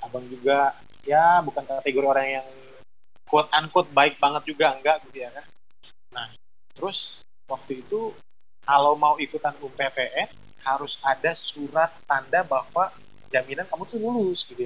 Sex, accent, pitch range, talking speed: male, native, 120-160 Hz, 140 wpm